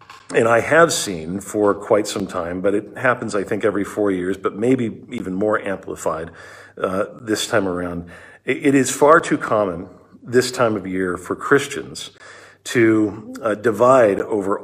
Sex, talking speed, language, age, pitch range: male, 165 wpm, English, 50-69, 105-150 Hz